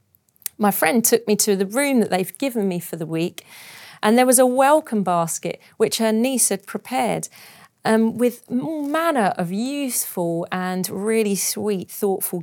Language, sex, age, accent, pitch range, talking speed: English, female, 40-59, British, 175-225 Hz, 165 wpm